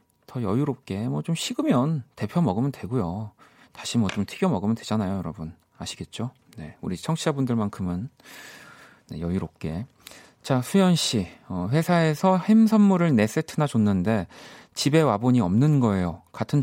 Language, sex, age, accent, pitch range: Korean, male, 40-59, native, 105-155 Hz